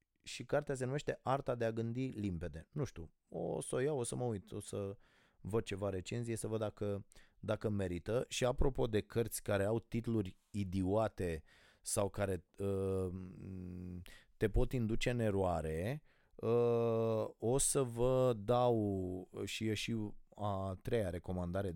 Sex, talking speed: male, 150 wpm